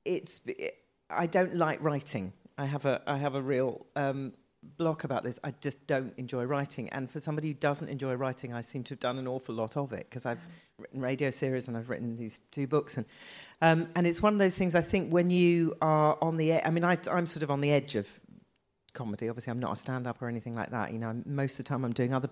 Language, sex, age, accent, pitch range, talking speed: English, female, 40-59, British, 120-155 Hz, 260 wpm